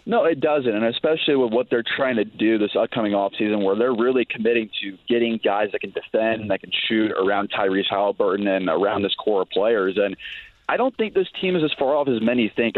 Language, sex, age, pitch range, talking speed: English, male, 30-49, 105-125 Hz, 235 wpm